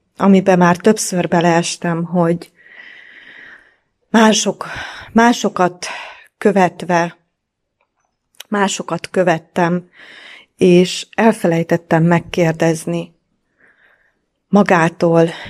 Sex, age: female, 30-49